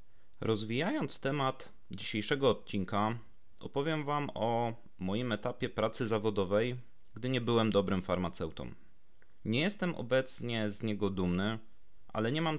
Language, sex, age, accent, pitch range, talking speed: Polish, male, 30-49, native, 100-130 Hz, 120 wpm